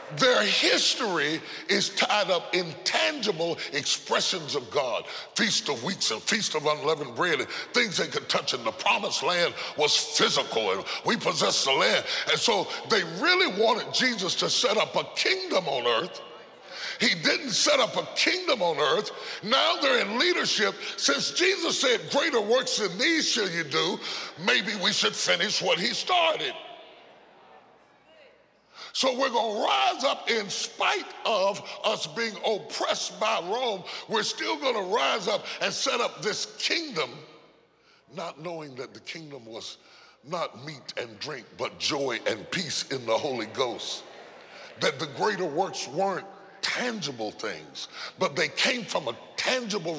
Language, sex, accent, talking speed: English, female, American, 155 wpm